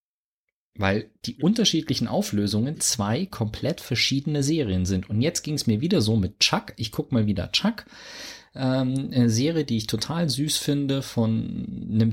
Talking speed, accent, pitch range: 165 wpm, German, 110-145 Hz